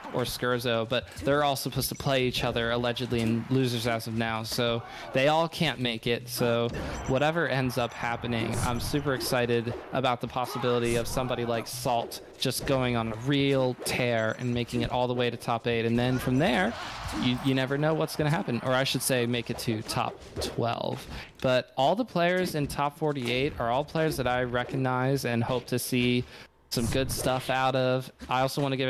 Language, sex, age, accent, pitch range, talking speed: English, male, 20-39, American, 120-130 Hz, 210 wpm